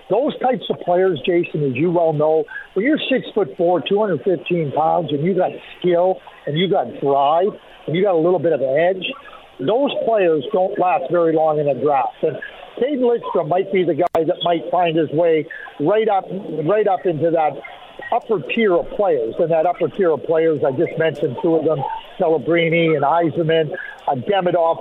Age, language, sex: 50-69, English, male